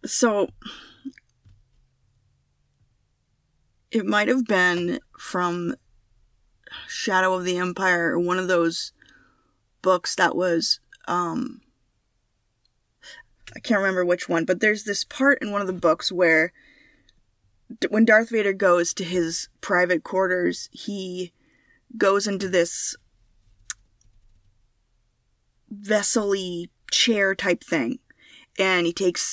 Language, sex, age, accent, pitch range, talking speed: English, female, 20-39, American, 160-205 Hz, 100 wpm